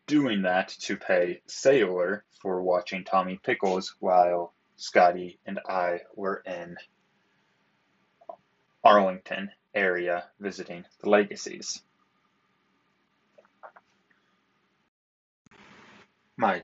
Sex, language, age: male, English, 20-39